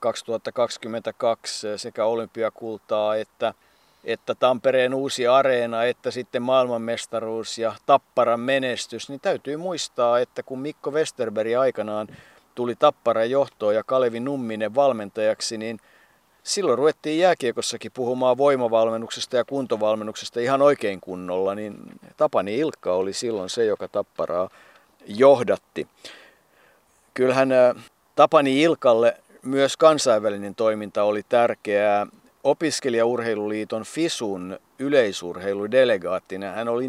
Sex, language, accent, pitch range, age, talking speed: male, Finnish, native, 105-130 Hz, 50-69, 100 wpm